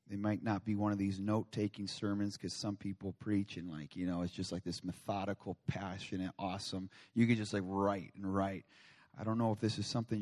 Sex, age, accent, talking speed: male, 30-49, American, 225 wpm